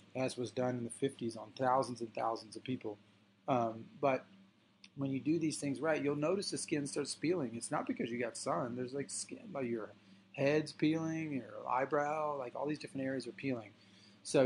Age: 30-49